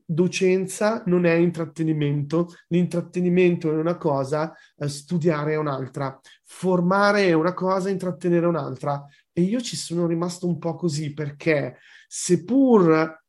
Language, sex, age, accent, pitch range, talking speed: Italian, male, 30-49, native, 150-185 Hz, 130 wpm